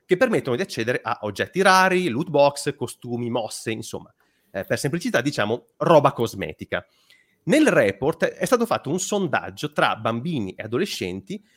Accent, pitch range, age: native, 125-200 Hz, 30-49